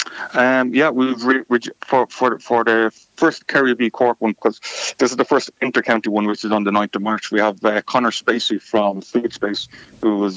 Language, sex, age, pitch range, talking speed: English, male, 30-49, 105-120 Hz, 225 wpm